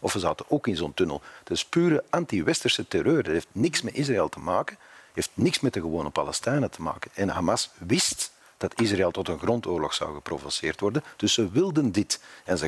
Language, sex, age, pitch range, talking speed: Dutch, male, 40-59, 95-130 Hz, 215 wpm